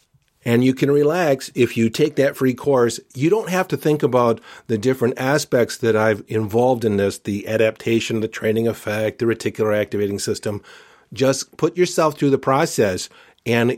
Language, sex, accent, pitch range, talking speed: English, male, American, 115-140 Hz, 175 wpm